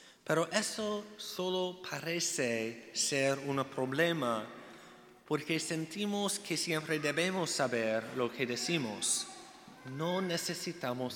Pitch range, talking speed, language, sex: 135-170 Hz, 95 wpm, Spanish, male